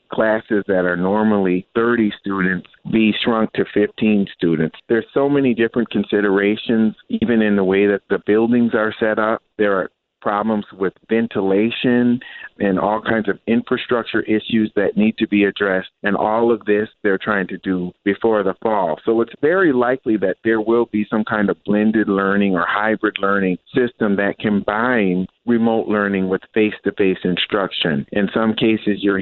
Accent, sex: American, male